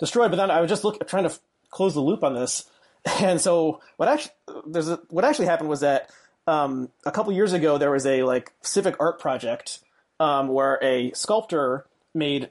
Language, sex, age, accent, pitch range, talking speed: English, male, 30-49, American, 140-175 Hz, 210 wpm